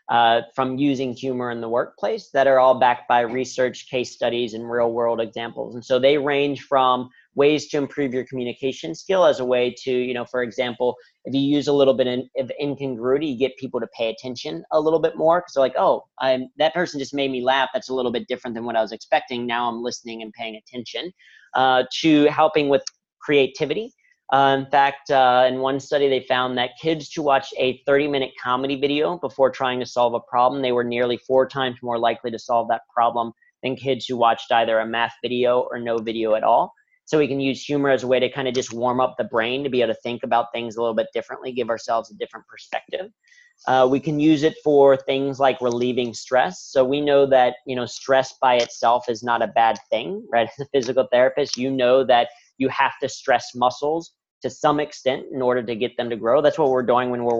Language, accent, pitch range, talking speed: English, American, 120-140 Hz, 230 wpm